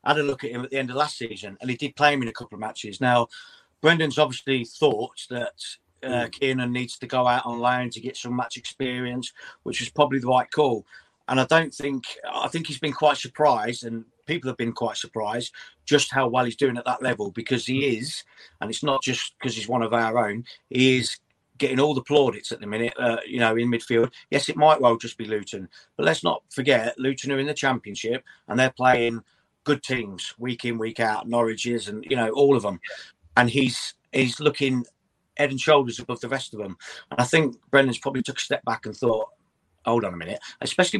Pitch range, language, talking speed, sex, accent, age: 115-135 Hz, English, 230 wpm, male, British, 40-59